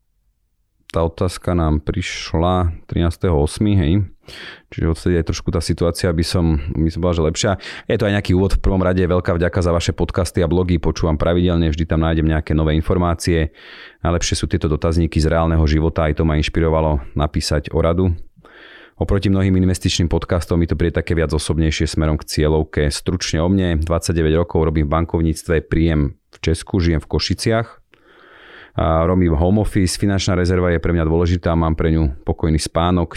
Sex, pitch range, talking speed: male, 80-90 Hz, 175 wpm